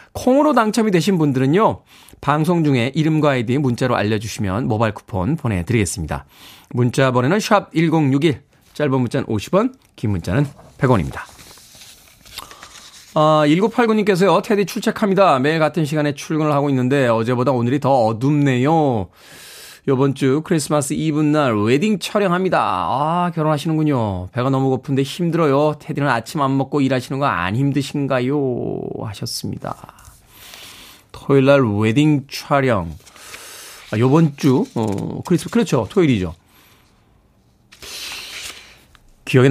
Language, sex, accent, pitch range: Korean, male, native, 125-160 Hz